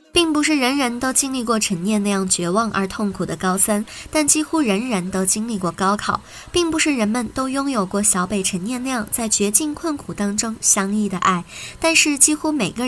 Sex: male